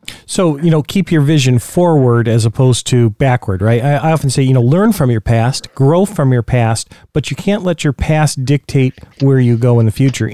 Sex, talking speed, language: male, 220 wpm, English